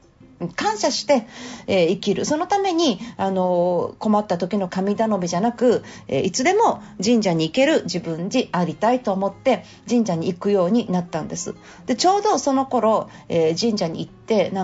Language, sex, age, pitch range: Japanese, female, 40-59, 170-230 Hz